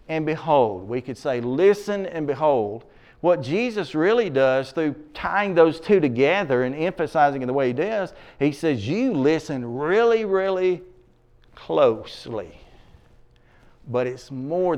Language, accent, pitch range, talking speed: English, American, 125-170 Hz, 140 wpm